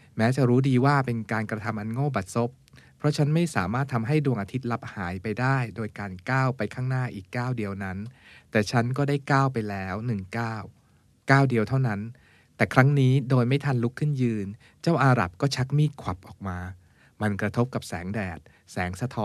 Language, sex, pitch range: Thai, male, 105-130 Hz